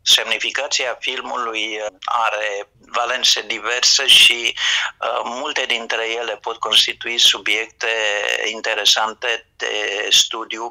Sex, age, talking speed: male, 50-69, 85 wpm